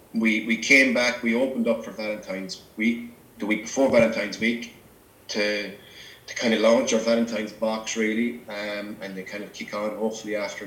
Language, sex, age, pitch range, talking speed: English, male, 20-39, 110-140 Hz, 185 wpm